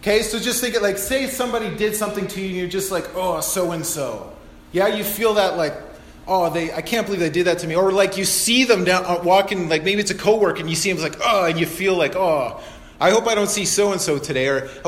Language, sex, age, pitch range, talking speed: English, male, 30-49, 170-215 Hz, 260 wpm